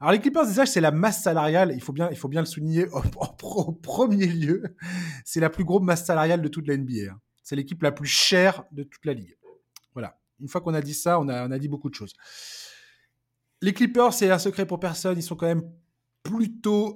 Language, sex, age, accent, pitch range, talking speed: French, male, 20-39, French, 135-175 Hz, 225 wpm